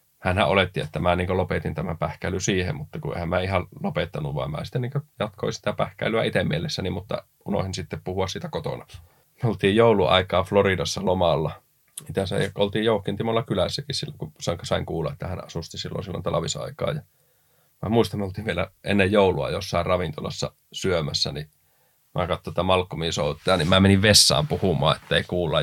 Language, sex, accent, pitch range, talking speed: Finnish, male, native, 90-105 Hz, 170 wpm